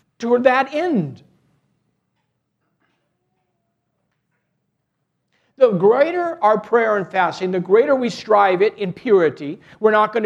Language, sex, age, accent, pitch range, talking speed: English, male, 60-79, American, 165-235 Hz, 110 wpm